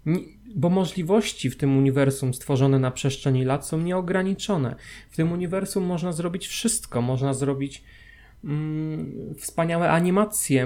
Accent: native